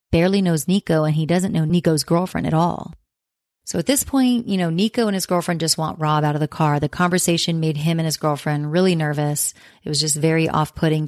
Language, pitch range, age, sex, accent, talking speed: English, 155-180 Hz, 30-49, female, American, 225 wpm